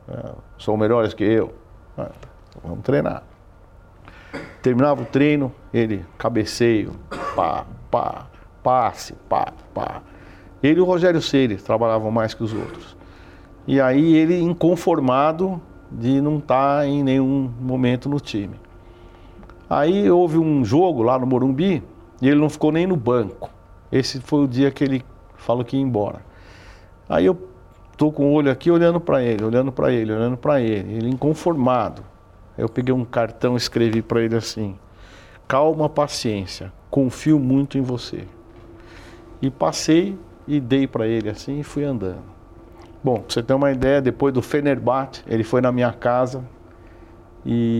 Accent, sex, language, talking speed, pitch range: Brazilian, male, Portuguese, 150 wpm, 100-135 Hz